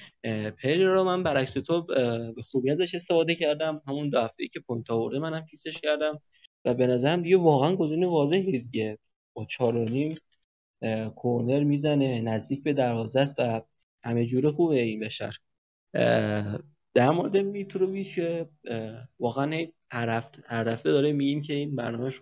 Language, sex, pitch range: Persian, male, 115-150 Hz